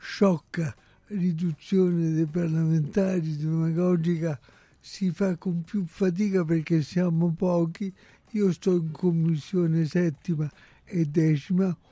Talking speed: 100 wpm